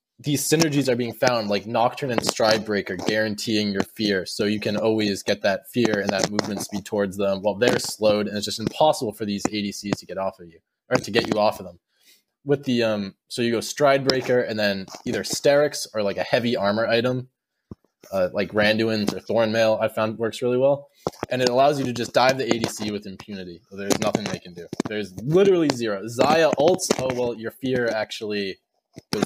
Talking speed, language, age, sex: 210 wpm, English, 20-39, male